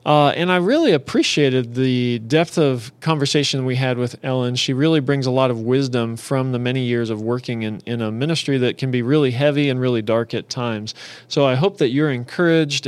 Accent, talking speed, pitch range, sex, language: American, 215 wpm, 125-145 Hz, male, English